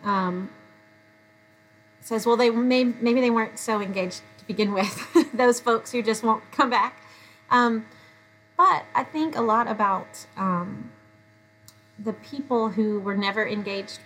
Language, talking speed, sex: English, 145 wpm, female